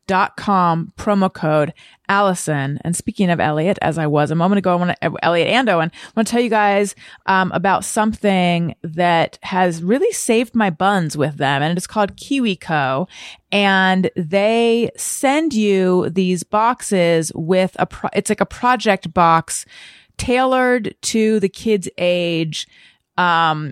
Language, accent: English, American